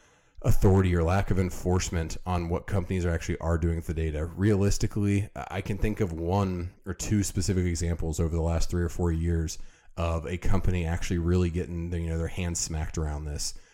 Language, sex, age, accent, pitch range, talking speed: English, male, 30-49, American, 85-95 Hz, 200 wpm